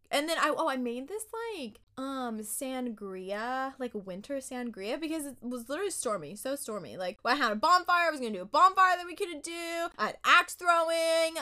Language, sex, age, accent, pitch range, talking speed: English, female, 20-39, American, 210-320 Hz, 210 wpm